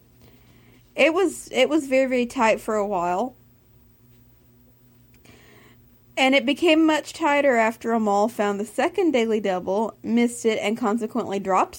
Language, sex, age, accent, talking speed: English, female, 30-49, American, 135 wpm